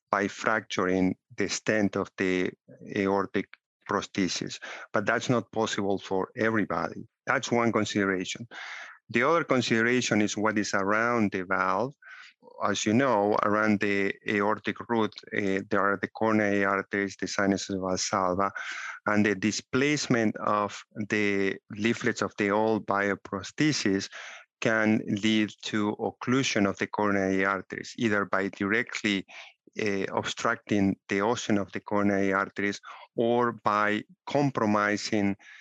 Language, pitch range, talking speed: English, 100-115 Hz, 125 wpm